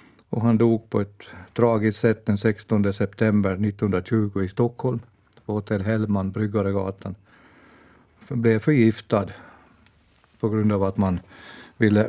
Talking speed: 120 wpm